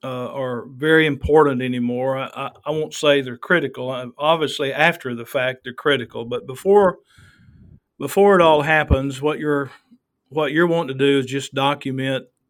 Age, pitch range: 50-69, 130-150 Hz